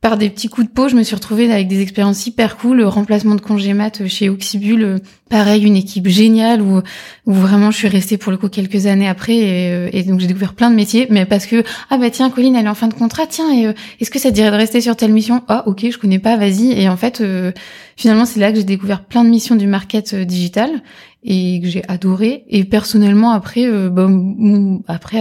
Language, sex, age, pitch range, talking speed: French, female, 20-39, 190-220 Hz, 240 wpm